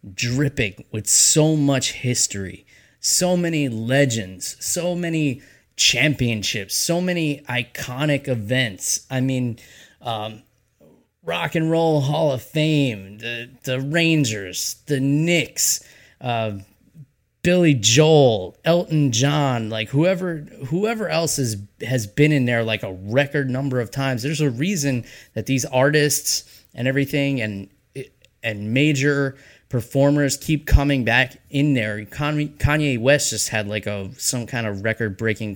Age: 20-39